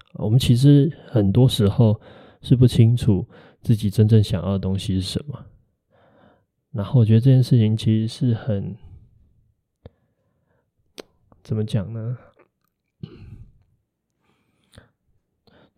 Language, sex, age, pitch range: Chinese, male, 20-39, 105-135 Hz